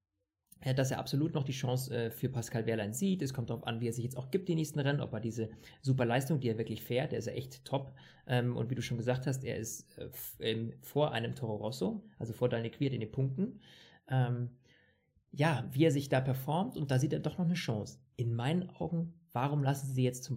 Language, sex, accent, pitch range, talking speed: German, male, German, 120-150 Hz, 245 wpm